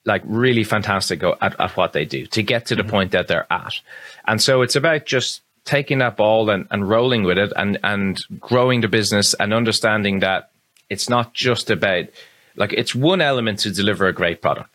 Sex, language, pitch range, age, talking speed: male, English, 100-125 Hz, 30-49, 205 wpm